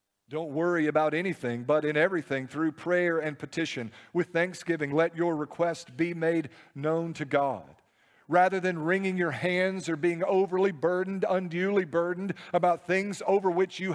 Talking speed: 160 wpm